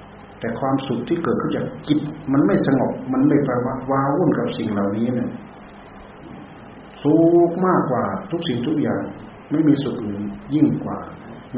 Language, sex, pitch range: Thai, male, 100-135 Hz